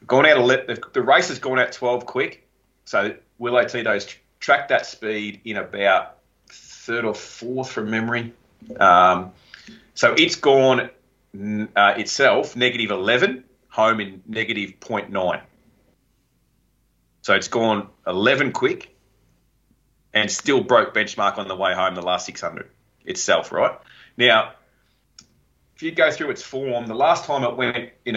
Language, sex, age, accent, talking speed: English, male, 30-49, Australian, 145 wpm